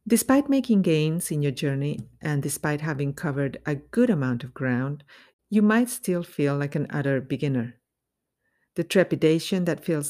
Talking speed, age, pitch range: 160 wpm, 50-69, 135-185 Hz